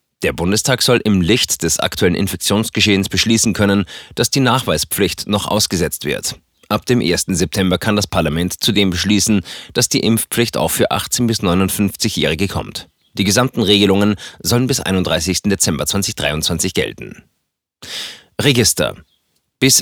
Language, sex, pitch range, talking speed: German, male, 90-115 Hz, 135 wpm